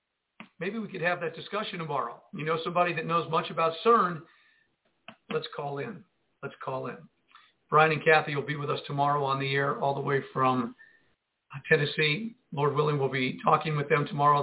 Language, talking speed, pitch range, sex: English, 185 wpm, 145-180 Hz, male